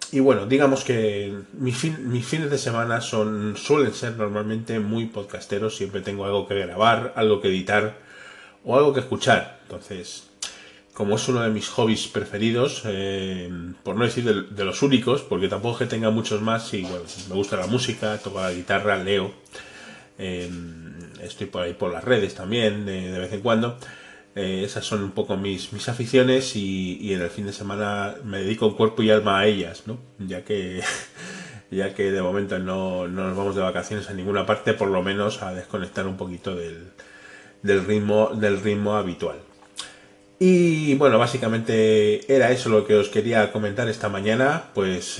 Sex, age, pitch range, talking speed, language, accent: male, 30-49, 100-115 Hz, 185 wpm, English, Spanish